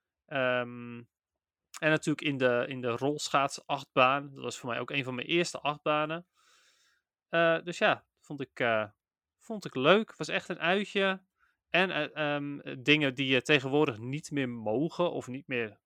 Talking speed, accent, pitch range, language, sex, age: 170 wpm, Dutch, 120-155 Hz, Dutch, male, 30-49